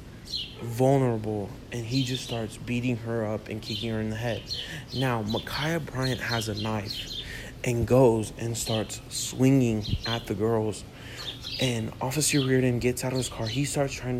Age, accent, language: 30-49, American, English